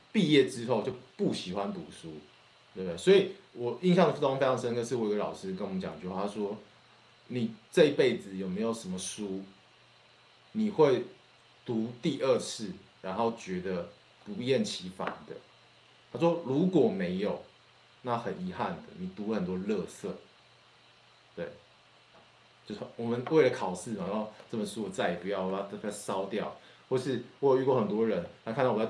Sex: male